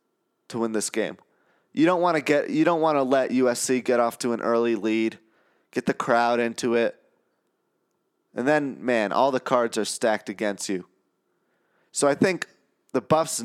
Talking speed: 185 wpm